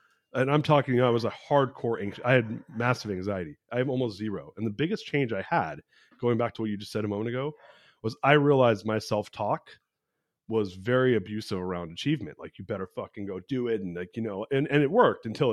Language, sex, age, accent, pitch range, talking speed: English, male, 30-49, American, 110-135 Hz, 230 wpm